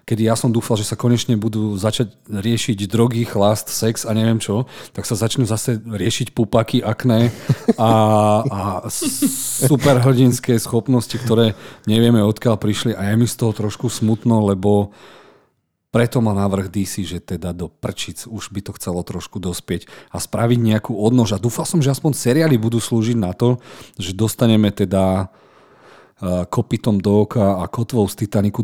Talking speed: 160 wpm